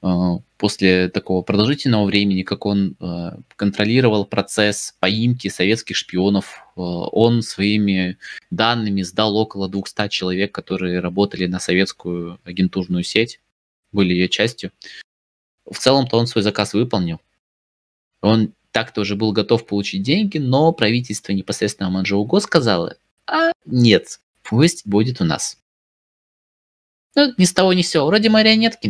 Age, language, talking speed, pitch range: 20-39, Russian, 125 wpm, 90-115 Hz